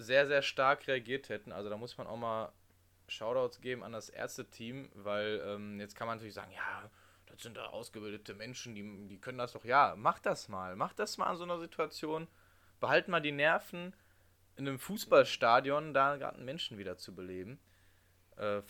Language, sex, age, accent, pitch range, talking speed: German, male, 10-29, German, 95-130 Hz, 195 wpm